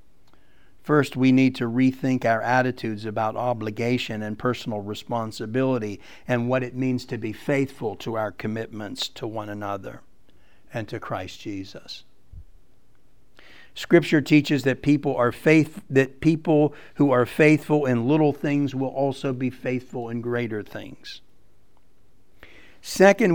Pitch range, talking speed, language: 115-140 Hz, 130 wpm, English